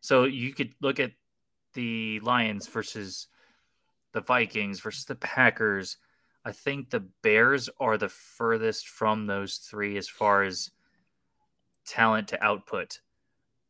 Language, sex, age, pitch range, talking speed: English, male, 20-39, 100-120 Hz, 125 wpm